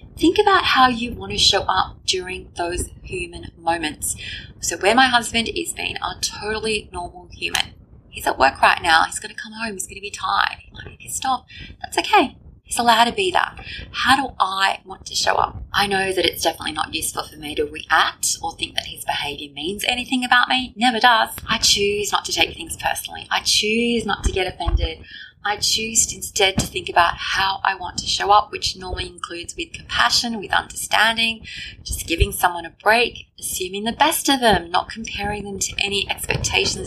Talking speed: 205 wpm